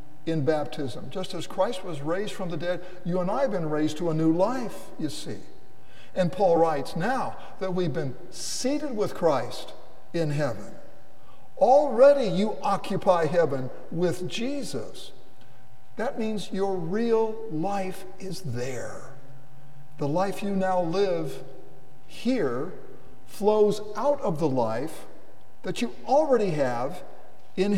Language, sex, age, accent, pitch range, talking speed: English, male, 50-69, American, 135-195 Hz, 135 wpm